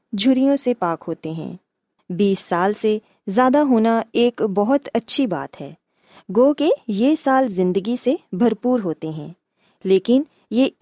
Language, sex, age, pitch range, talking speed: Urdu, female, 20-39, 195-270 Hz, 145 wpm